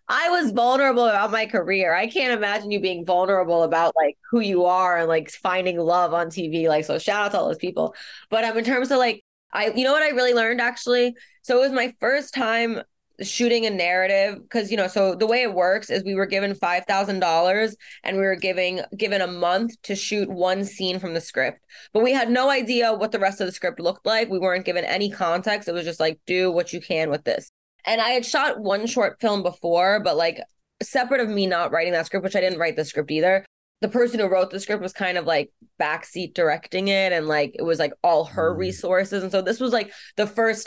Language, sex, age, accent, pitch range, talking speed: English, female, 20-39, American, 175-225 Hz, 240 wpm